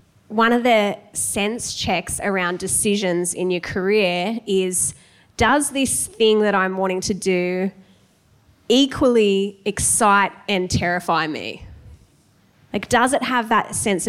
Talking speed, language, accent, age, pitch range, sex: 130 wpm, English, Australian, 20-39, 190-230 Hz, female